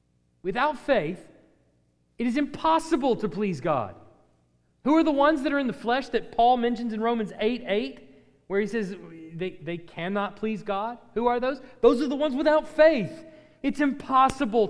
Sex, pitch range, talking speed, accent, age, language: male, 110-180 Hz, 175 wpm, American, 40-59, English